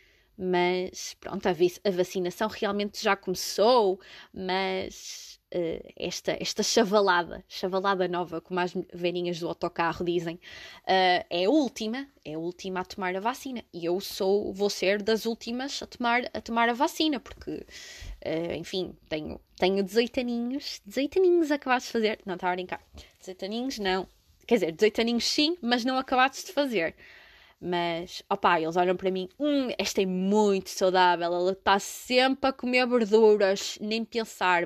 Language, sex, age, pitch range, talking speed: Portuguese, female, 20-39, 185-260 Hz, 160 wpm